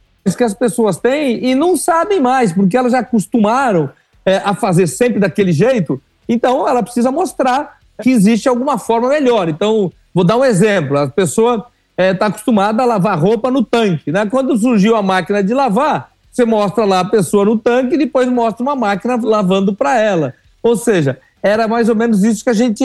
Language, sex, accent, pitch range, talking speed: Portuguese, male, Brazilian, 200-260 Hz, 190 wpm